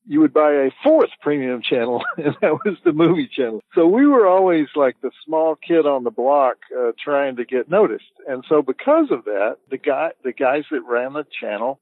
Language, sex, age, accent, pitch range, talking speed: English, male, 60-79, American, 110-170 Hz, 215 wpm